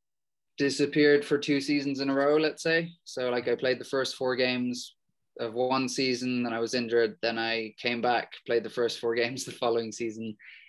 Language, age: English, 20-39